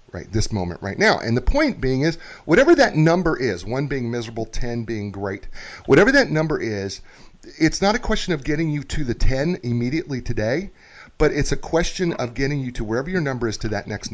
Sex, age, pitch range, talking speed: male, 40-59, 110-170 Hz, 215 wpm